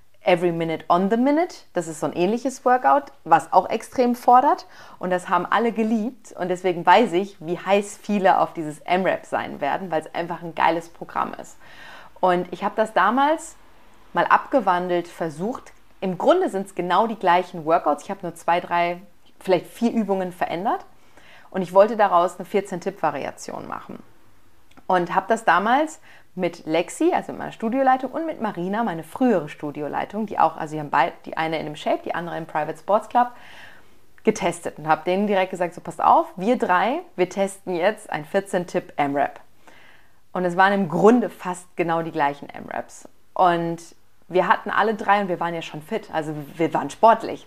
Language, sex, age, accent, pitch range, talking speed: German, female, 30-49, German, 170-215 Hz, 185 wpm